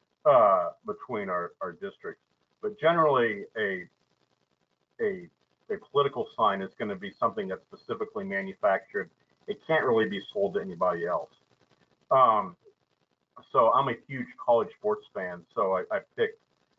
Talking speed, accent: 145 wpm, American